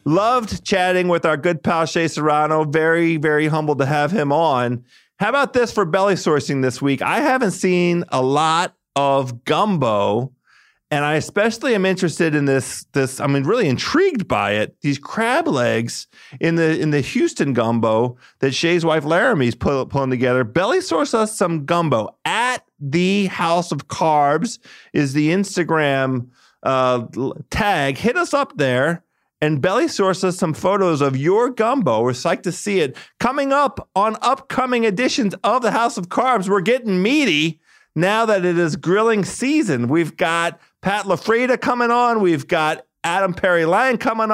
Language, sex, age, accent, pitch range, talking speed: English, male, 40-59, American, 145-220 Hz, 165 wpm